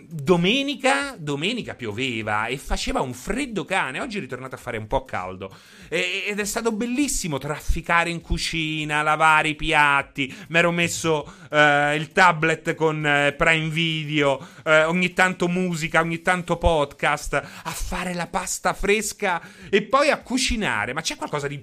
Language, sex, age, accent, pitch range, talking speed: Italian, male, 30-49, native, 140-185 Hz, 155 wpm